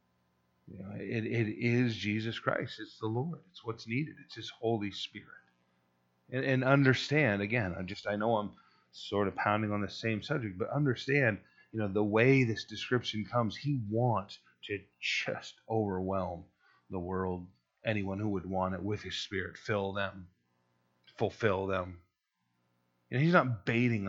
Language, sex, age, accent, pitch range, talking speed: English, male, 30-49, American, 90-115 Hz, 165 wpm